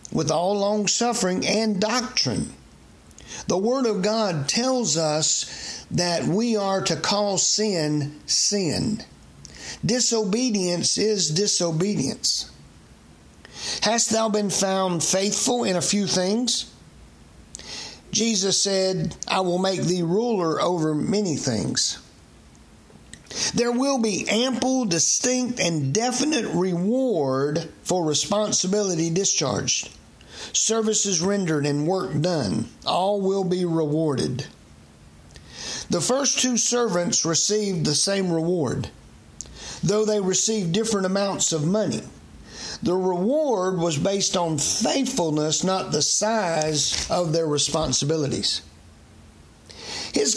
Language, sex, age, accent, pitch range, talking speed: English, male, 60-79, American, 165-220 Hz, 105 wpm